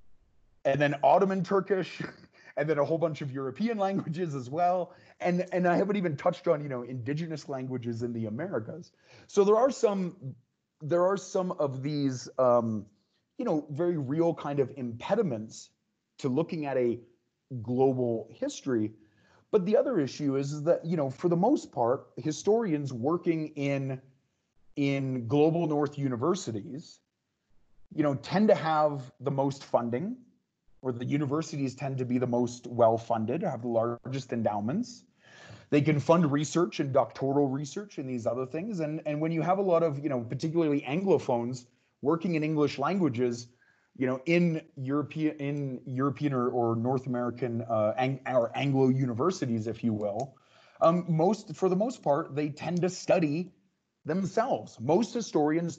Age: 30-49